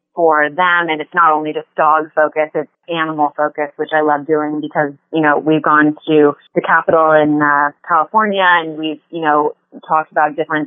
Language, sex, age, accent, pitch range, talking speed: English, female, 20-39, American, 150-165 Hz, 190 wpm